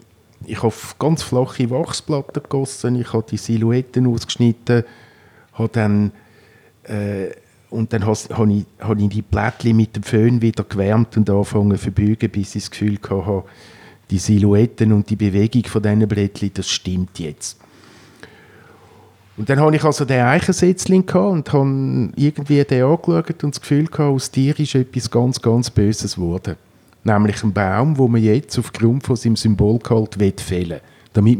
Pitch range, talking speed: 105-130 Hz, 155 wpm